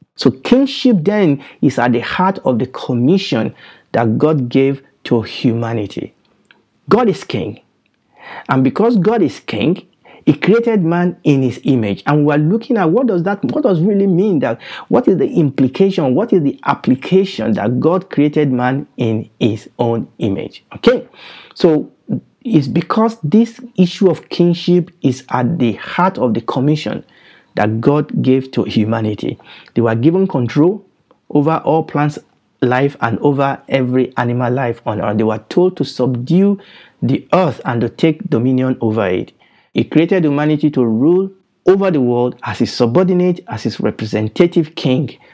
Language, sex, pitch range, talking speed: English, male, 120-175 Hz, 160 wpm